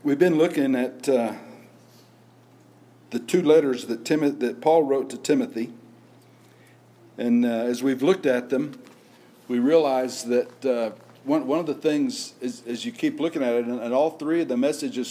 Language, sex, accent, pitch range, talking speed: English, male, American, 130-215 Hz, 185 wpm